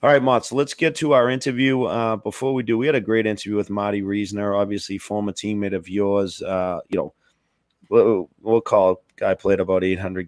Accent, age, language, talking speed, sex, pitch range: American, 30-49, English, 215 wpm, male, 95-120 Hz